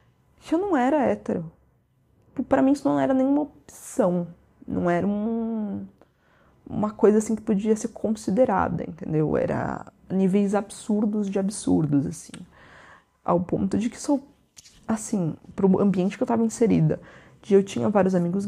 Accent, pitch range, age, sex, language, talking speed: Brazilian, 170-215 Hz, 20-39, female, Portuguese, 145 wpm